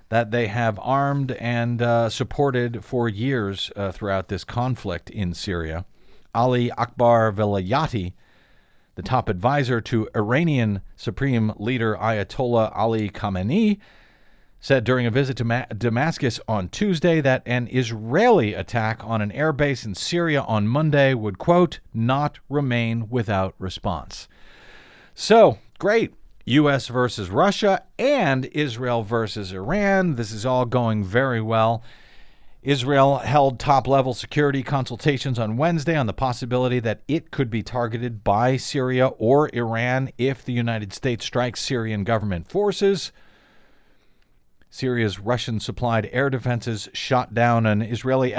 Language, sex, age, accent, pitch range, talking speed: English, male, 50-69, American, 110-135 Hz, 130 wpm